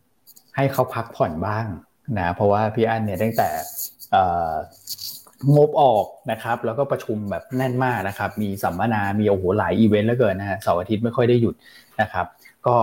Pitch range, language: 105-125 Hz, Thai